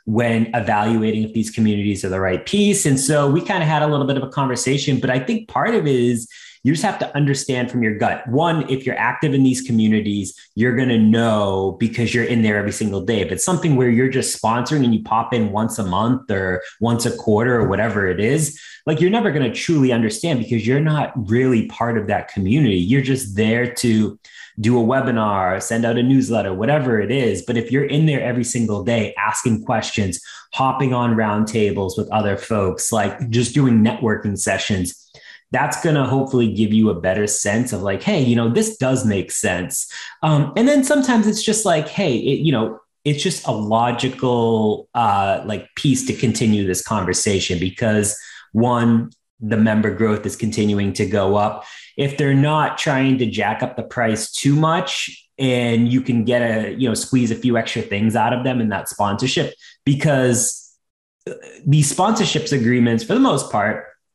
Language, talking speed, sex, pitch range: English, 200 wpm, male, 110-135 Hz